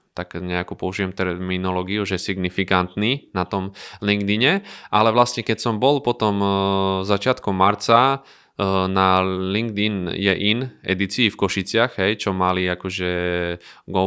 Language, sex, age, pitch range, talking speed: Slovak, male, 20-39, 95-105 Hz, 130 wpm